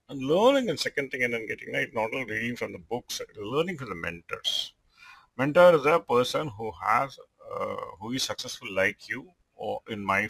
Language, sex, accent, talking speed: English, male, Indian, 200 wpm